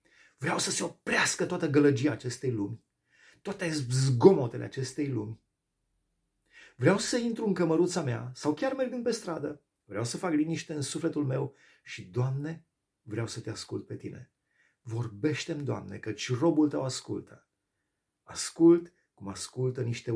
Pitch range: 110-160 Hz